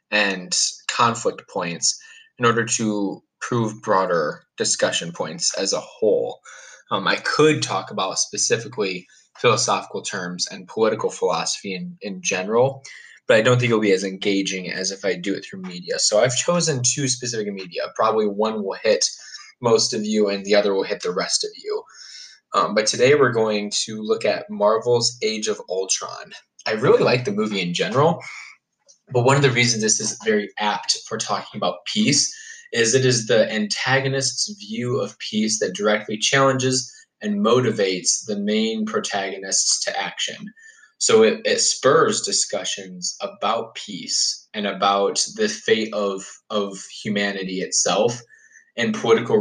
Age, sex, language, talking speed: 20-39, male, English, 160 wpm